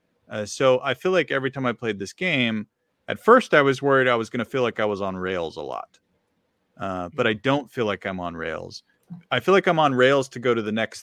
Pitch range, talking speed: 105-135 Hz, 260 wpm